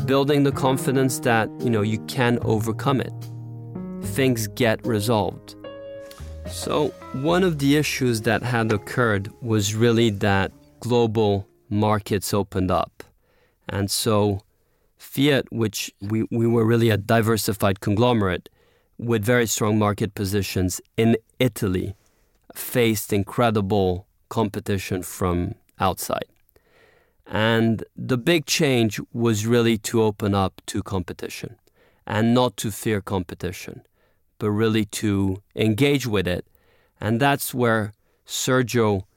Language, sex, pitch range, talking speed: English, male, 100-120 Hz, 120 wpm